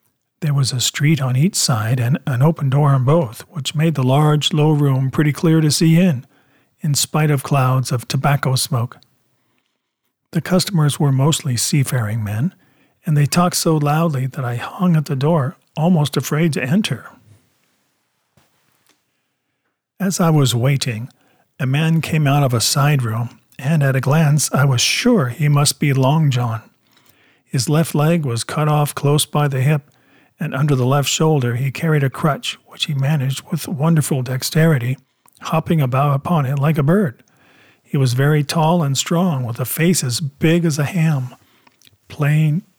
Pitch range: 130-160 Hz